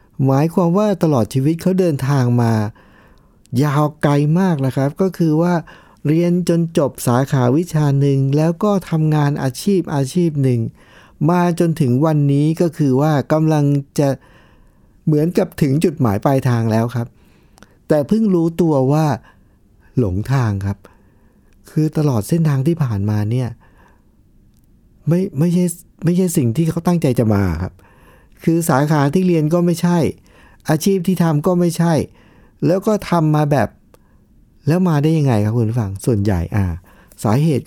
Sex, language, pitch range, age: male, Thai, 110-160 Hz, 60-79